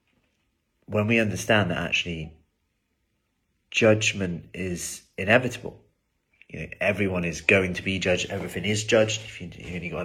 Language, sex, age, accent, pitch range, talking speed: English, male, 30-49, British, 85-105 Hz, 145 wpm